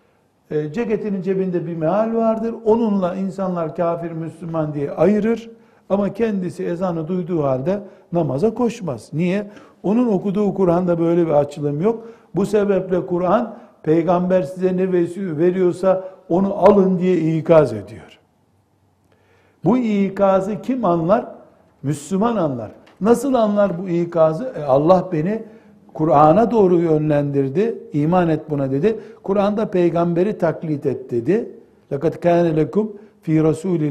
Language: Turkish